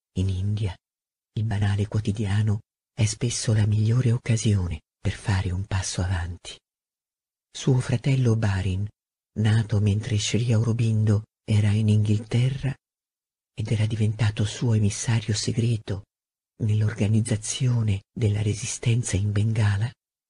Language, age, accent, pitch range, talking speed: Italian, 50-69, native, 105-120 Hz, 105 wpm